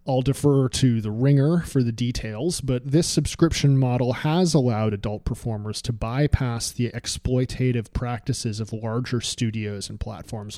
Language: English